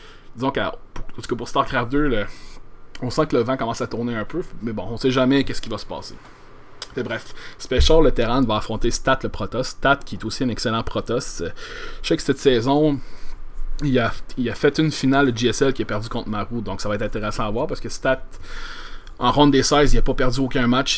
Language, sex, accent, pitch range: French, male, Canadian, 105-130 Hz